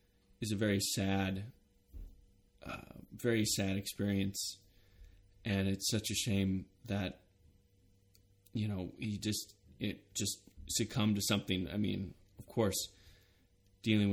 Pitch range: 95-110 Hz